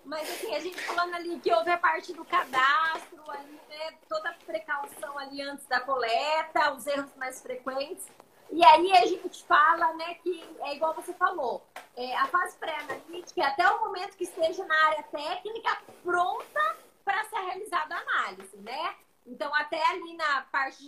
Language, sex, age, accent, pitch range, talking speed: Portuguese, female, 20-39, Brazilian, 290-370 Hz, 175 wpm